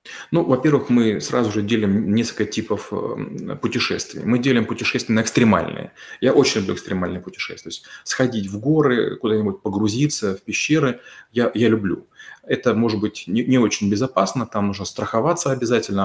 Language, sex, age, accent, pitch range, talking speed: Russian, male, 30-49, native, 105-120 Hz, 155 wpm